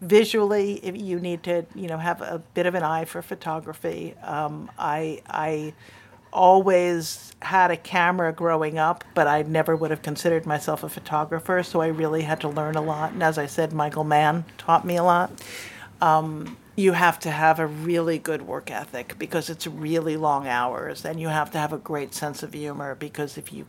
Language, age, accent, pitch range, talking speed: English, 50-69, American, 150-175 Hz, 200 wpm